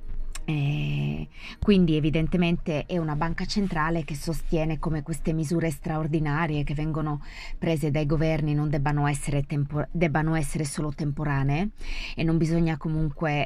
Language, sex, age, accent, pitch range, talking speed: Italian, female, 20-39, native, 145-165 Hz, 130 wpm